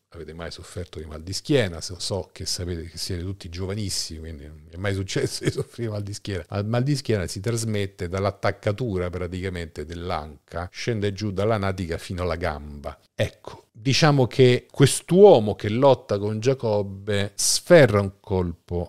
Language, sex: Italian, male